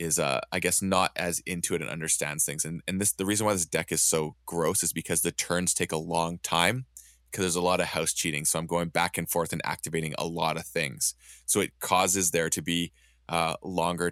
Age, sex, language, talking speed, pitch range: 20-39, male, English, 240 wpm, 75-90 Hz